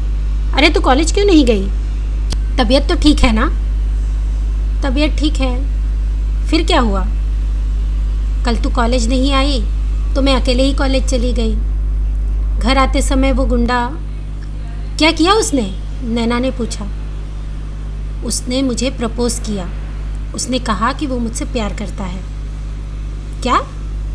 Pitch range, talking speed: 190-280 Hz, 135 wpm